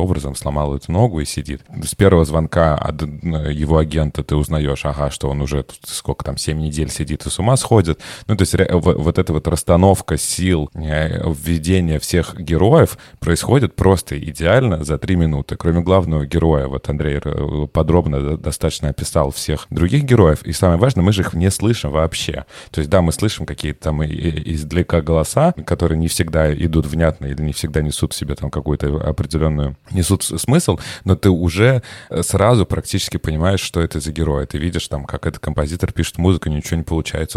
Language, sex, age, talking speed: Russian, male, 30-49, 180 wpm